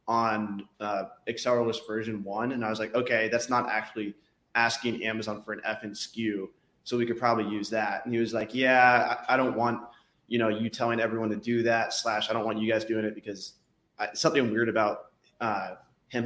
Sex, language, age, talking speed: male, English, 20-39, 215 wpm